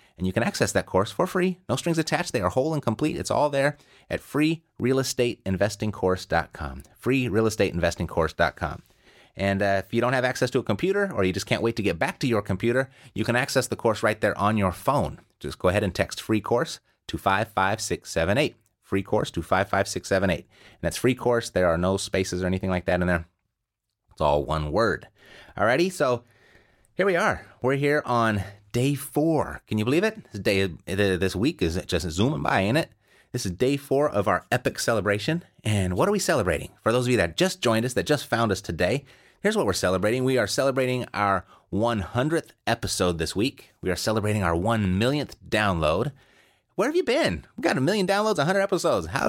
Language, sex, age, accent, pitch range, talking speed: English, male, 30-49, American, 100-135 Hz, 205 wpm